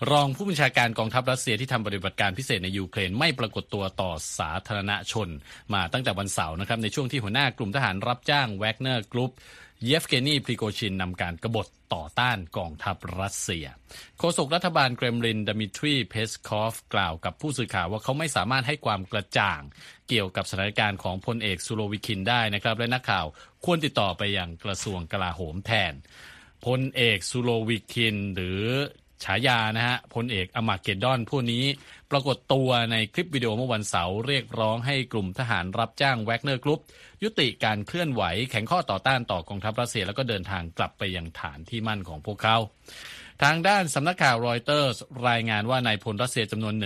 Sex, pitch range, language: male, 100-130 Hz, Thai